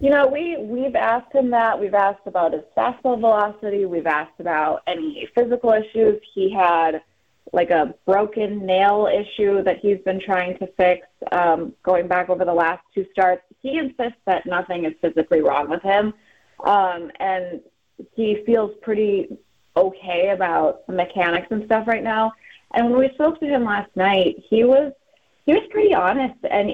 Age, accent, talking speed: 30-49, American, 170 wpm